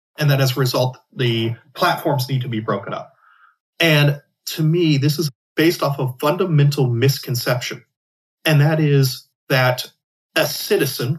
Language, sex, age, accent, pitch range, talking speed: English, male, 40-59, American, 130-155 Hz, 150 wpm